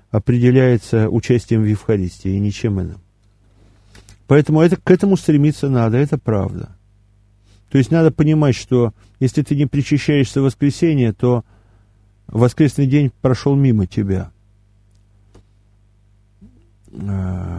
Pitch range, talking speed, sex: 100-130 Hz, 115 wpm, male